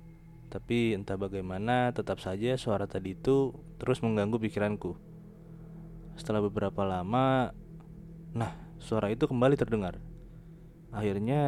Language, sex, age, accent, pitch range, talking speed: Indonesian, male, 20-39, native, 105-160 Hz, 105 wpm